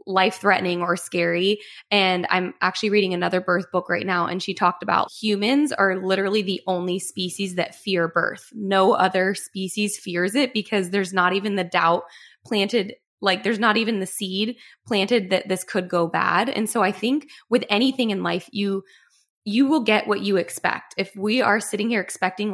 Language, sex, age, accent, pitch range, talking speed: English, female, 20-39, American, 180-210 Hz, 185 wpm